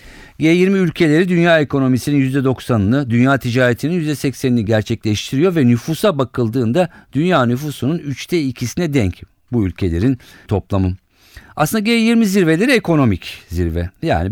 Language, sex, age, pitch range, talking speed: Turkish, male, 50-69, 95-140 Hz, 110 wpm